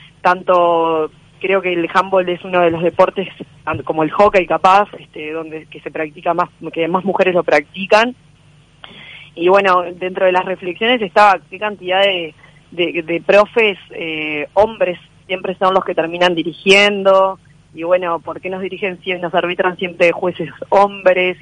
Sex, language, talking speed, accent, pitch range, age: female, Spanish, 165 wpm, Argentinian, 165-195 Hz, 20-39